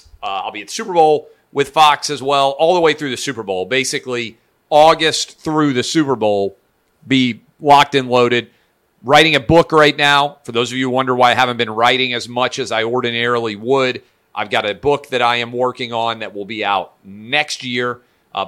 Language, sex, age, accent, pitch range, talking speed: English, male, 40-59, American, 115-140 Hz, 215 wpm